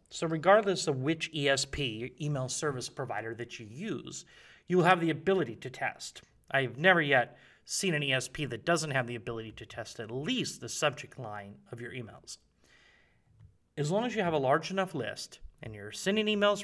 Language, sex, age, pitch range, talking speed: English, male, 30-49, 120-175 Hz, 190 wpm